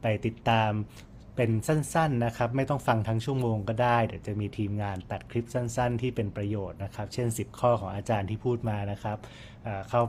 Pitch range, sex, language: 105-120 Hz, male, Thai